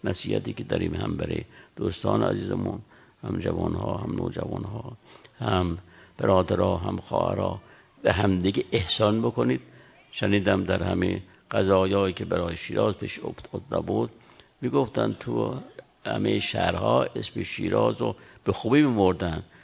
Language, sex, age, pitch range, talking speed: Persian, male, 60-79, 90-120 Hz, 130 wpm